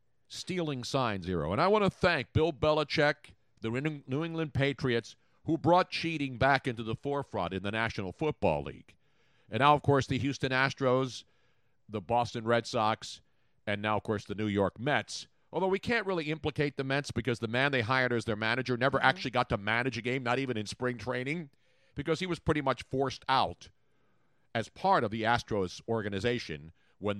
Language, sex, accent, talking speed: English, male, American, 190 wpm